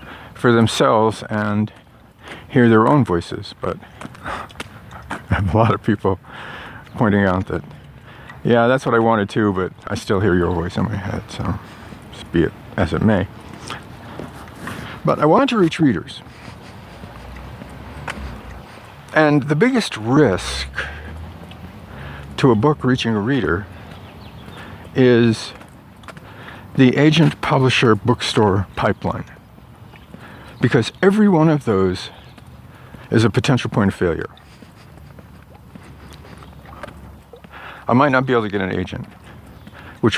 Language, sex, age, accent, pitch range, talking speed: English, male, 50-69, American, 95-125 Hz, 120 wpm